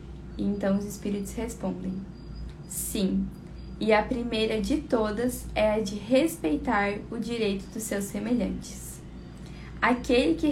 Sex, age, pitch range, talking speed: female, 10-29, 210-255 Hz, 125 wpm